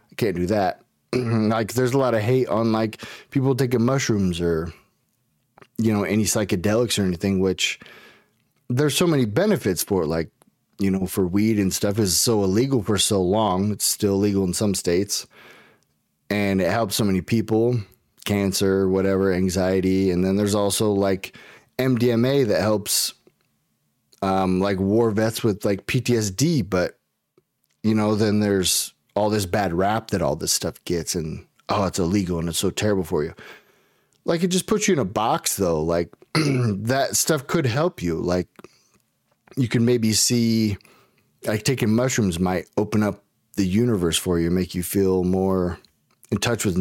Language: English